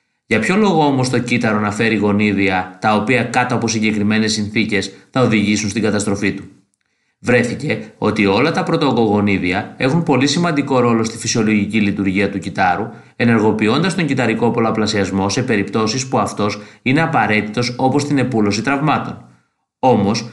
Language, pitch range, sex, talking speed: Greek, 105-135 Hz, male, 145 wpm